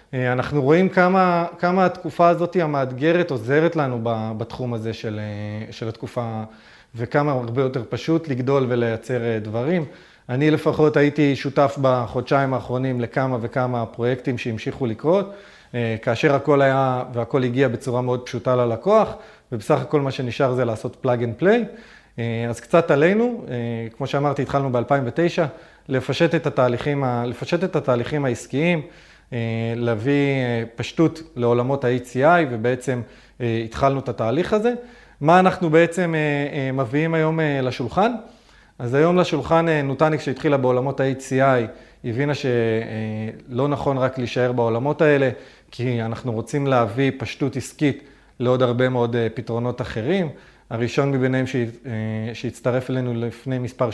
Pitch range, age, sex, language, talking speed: 120-150 Hz, 30-49, male, Hebrew, 120 wpm